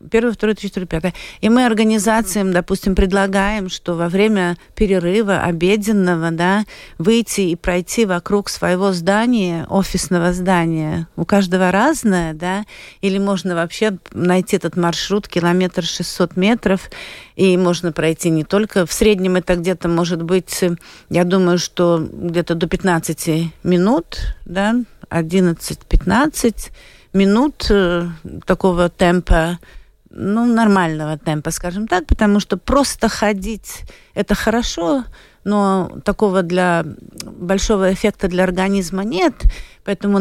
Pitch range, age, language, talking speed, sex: 175-210 Hz, 50-69, Russian, 120 wpm, female